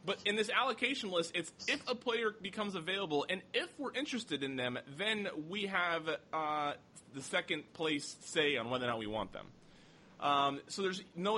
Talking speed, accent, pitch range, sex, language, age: 190 wpm, American, 120-165 Hz, male, English, 20-39